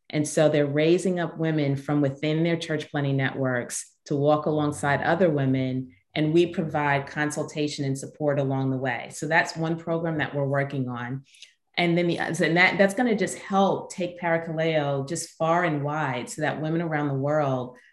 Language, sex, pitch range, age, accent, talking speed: English, female, 140-165 Hz, 30-49, American, 185 wpm